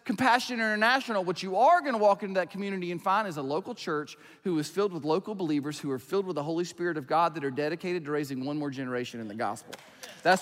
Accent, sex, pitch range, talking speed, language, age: American, male, 160-220 Hz, 255 wpm, English, 30-49